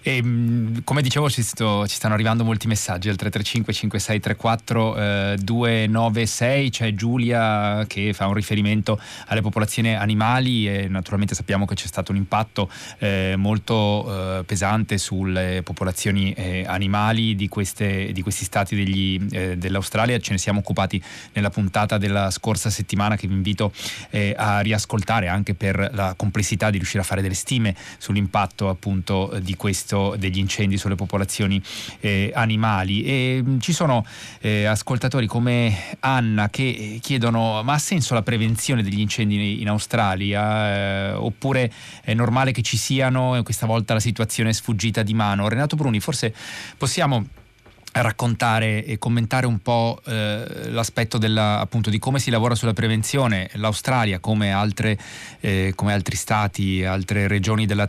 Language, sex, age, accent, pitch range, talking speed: Italian, male, 20-39, native, 100-115 Hz, 150 wpm